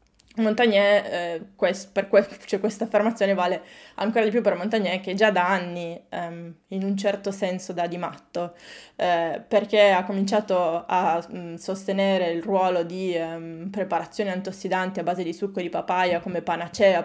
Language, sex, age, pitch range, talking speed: Italian, female, 20-39, 175-205 Hz, 160 wpm